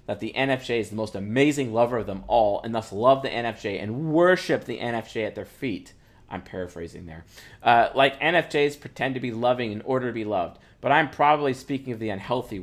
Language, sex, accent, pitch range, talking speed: English, male, American, 105-135 Hz, 215 wpm